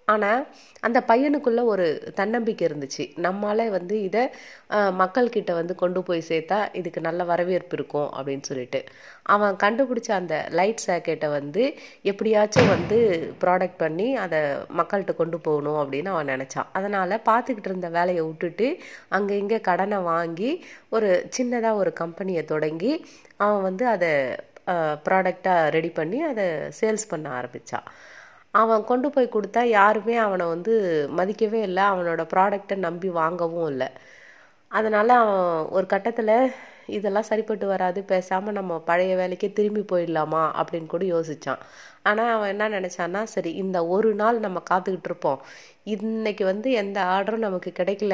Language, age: Tamil, 30-49